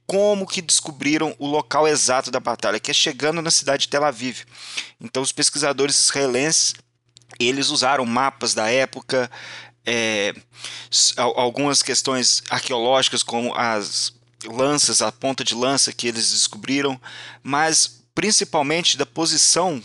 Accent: Brazilian